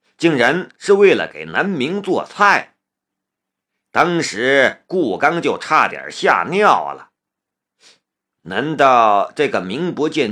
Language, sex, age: Chinese, male, 50-69